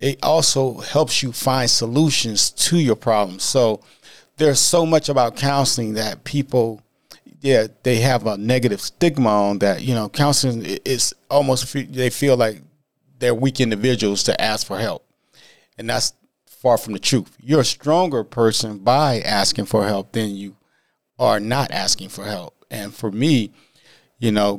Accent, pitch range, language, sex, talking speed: American, 105-130 Hz, English, male, 160 wpm